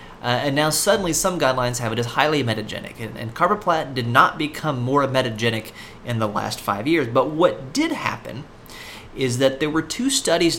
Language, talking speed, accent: English, 195 wpm, American